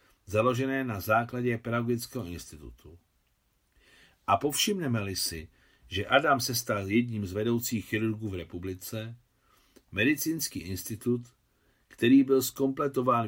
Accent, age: native, 50-69